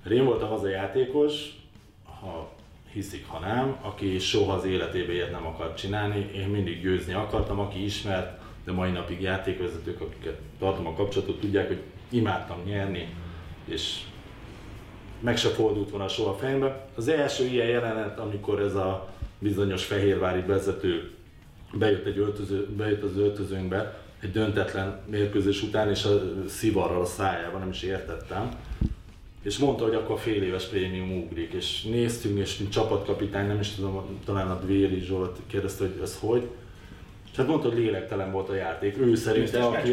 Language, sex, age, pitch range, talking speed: Hungarian, male, 30-49, 95-115 Hz, 155 wpm